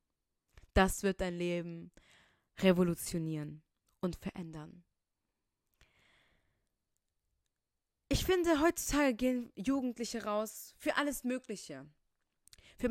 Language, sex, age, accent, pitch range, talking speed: German, female, 20-39, German, 190-250 Hz, 80 wpm